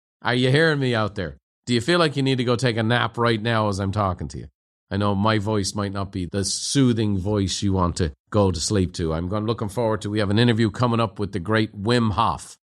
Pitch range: 90-125 Hz